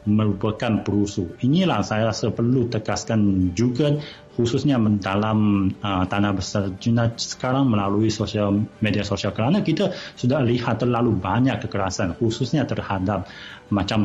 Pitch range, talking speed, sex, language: 100-125 Hz, 130 wpm, male, Malay